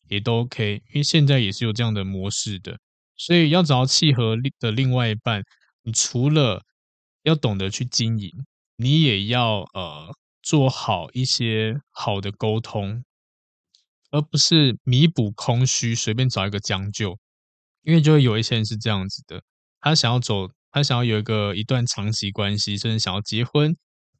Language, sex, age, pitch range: Chinese, male, 20-39, 105-130 Hz